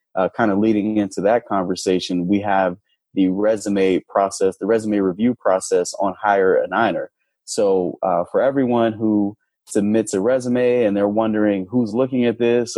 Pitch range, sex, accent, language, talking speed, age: 95-115 Hz, male, American, English, 160 wpm, 20-39